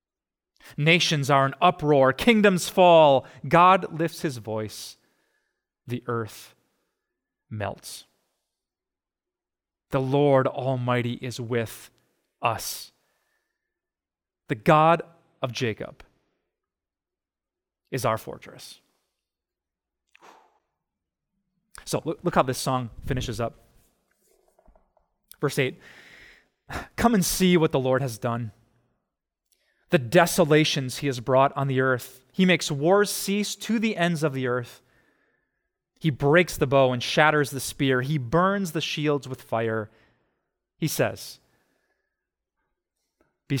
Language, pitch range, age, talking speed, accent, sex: English, 125-170 Hz, 30-49, 105 wpm, American, male